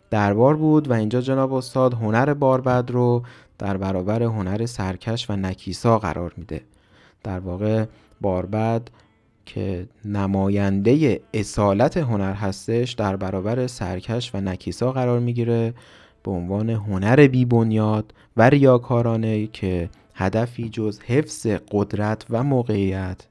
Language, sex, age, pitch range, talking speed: Persian, male, 30-49, 100-130 Hz, 120 wpm